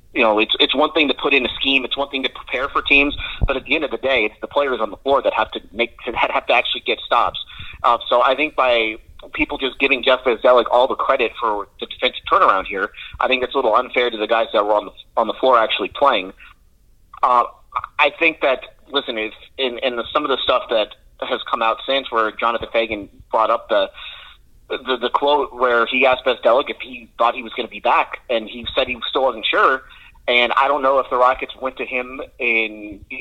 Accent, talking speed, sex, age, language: American, 240 wpm, male, 30-49, English